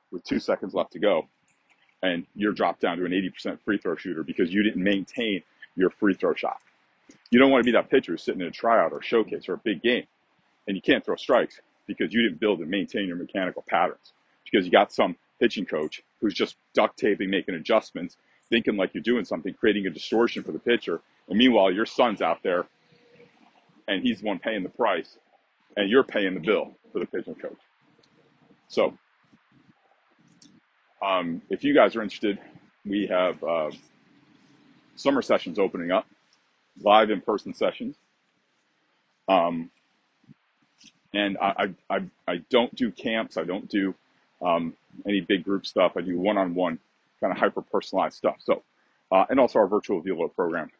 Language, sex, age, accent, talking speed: English, male, 40-59, American, 175 wpm